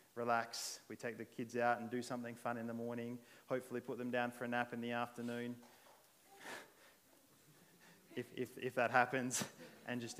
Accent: Australian